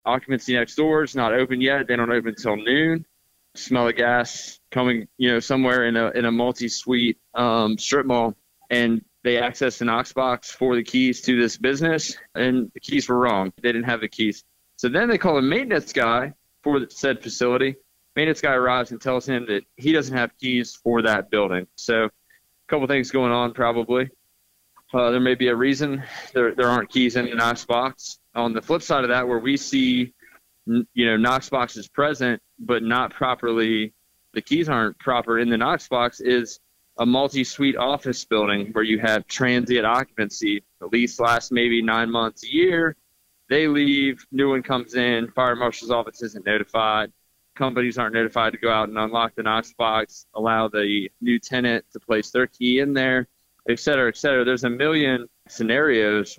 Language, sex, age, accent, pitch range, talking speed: English, male, 20-39, American, 115-130 Hz, 195 wpm